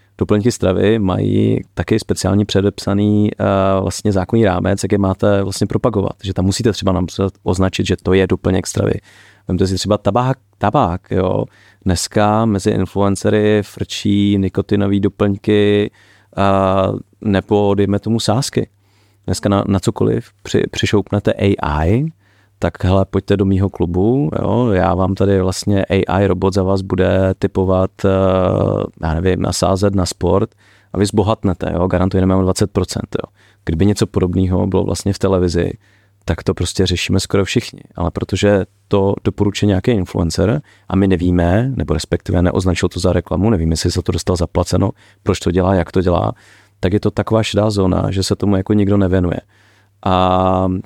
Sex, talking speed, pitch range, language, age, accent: male, 155 wpm, 95-105 Hz, English, 30-49, Czech